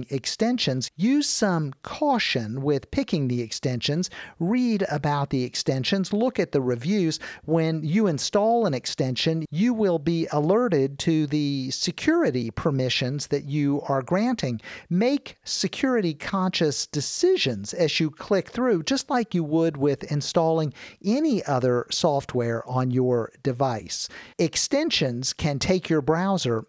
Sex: male